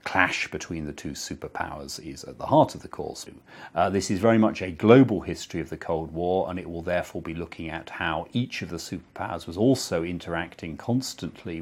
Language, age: English, 40-59